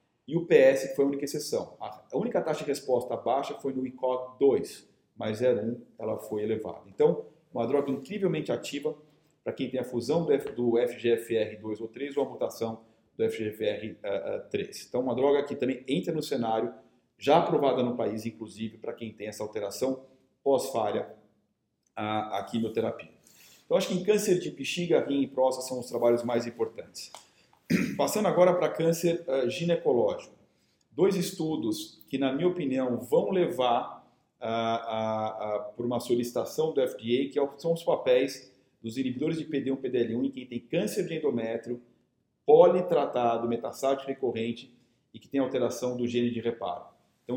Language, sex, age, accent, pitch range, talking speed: Portuguese, male, 40-59, Brazilian, 115-155 Hz, 160 wpm